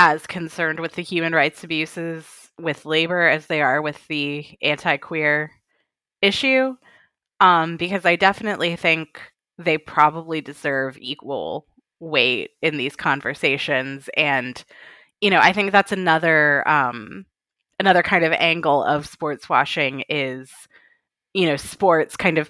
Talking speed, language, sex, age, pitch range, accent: 135 wpm, English, female, 20-39, 140-165 Hz, American